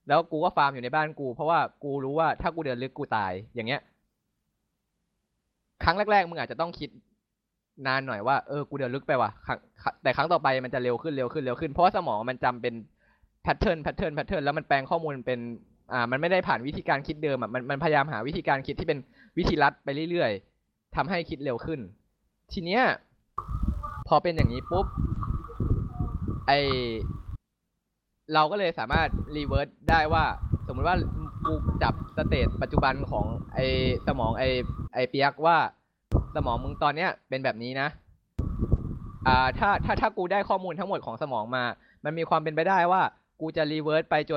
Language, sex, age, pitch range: Thai, male, 20-39, 125-160 Hz